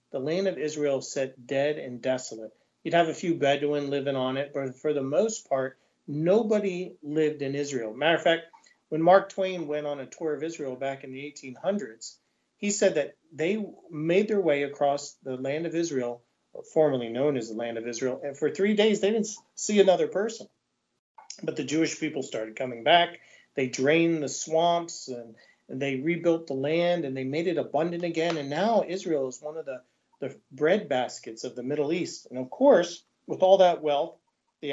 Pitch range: 140-180 Hz